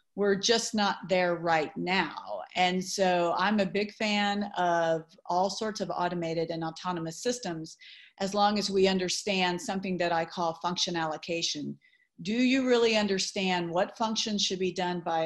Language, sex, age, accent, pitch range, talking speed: English, female, 40-59, American, 175-215 Hz, 160 wpm